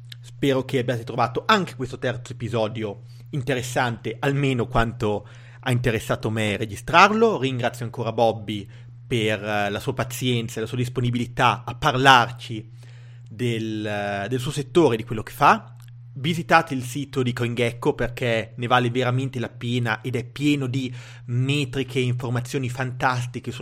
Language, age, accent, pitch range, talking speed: English, 30-49, Italian, 120-135 Hz, 140 wpm